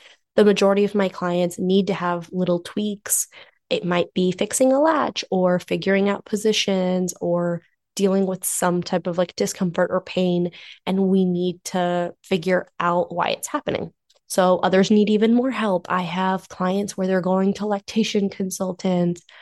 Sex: female